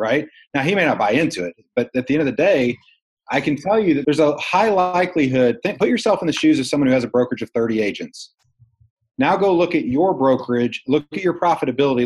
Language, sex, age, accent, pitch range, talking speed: English, male, 40-59, American, 130-180 Hz, 245 wpm